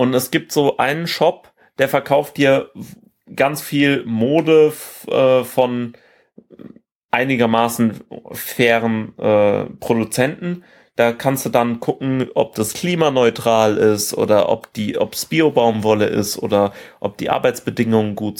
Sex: male